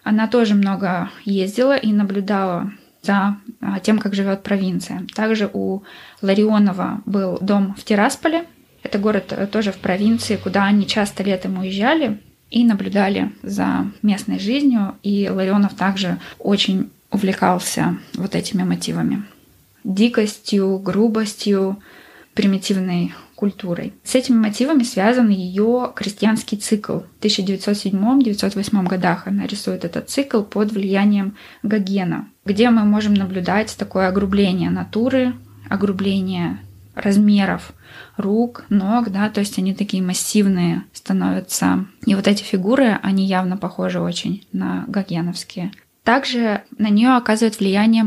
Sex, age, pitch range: female, 20-39, 195-220 Hz